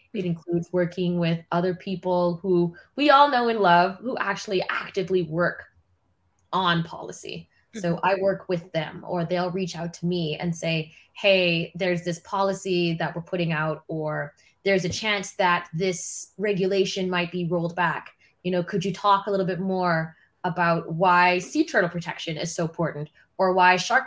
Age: 20-39